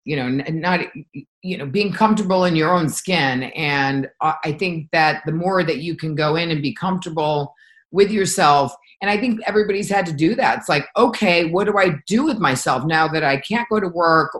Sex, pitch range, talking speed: female, 150-185 Hz, 215 wpm